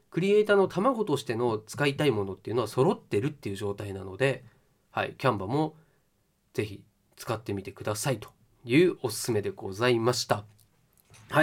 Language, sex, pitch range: Japanese, male, 105-145 Hz